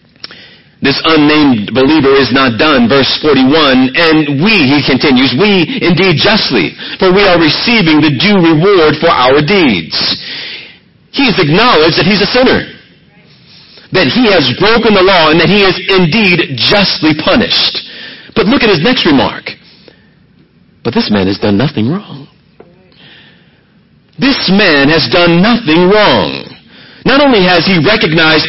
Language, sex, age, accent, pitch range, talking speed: English, male, 40-59, American, 170-235 Hz, 145 wpm